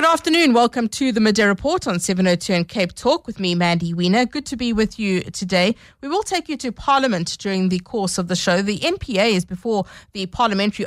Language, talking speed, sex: English, 220 wpm, female